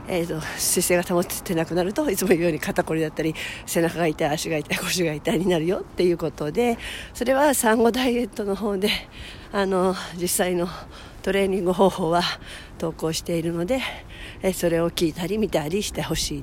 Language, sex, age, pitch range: Japanese, female, 50-69, 165-210 Hz